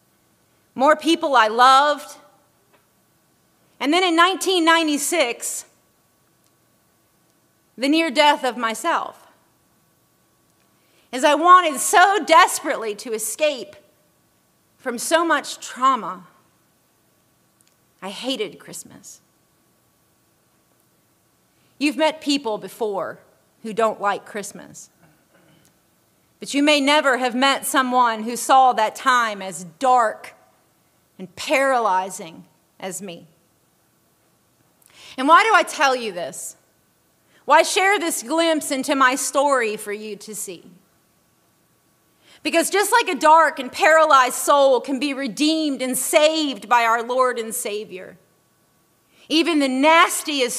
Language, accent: English, American